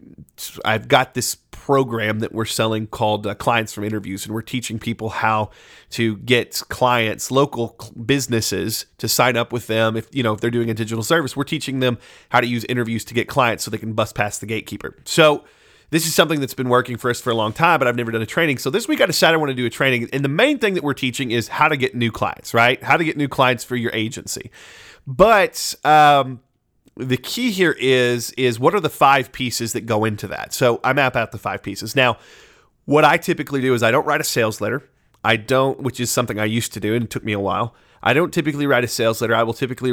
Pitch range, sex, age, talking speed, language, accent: 115-140 Hz, male, 30-49, 250 wpm, English, American